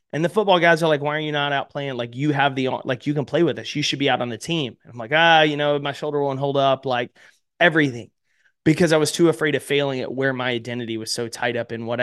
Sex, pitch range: male, 120-150 Hz